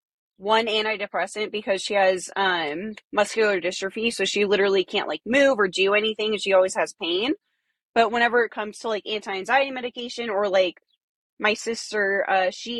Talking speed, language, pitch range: 170 wpm, English, 190-225 Hz